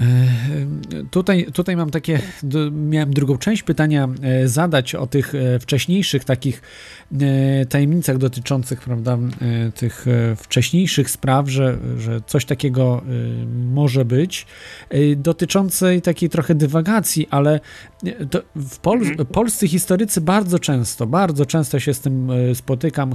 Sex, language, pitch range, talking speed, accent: male, Polish, 135-170 Hz, 110 wpm, native